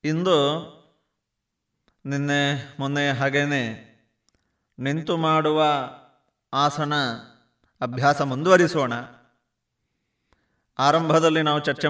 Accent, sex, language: native, male, Kannada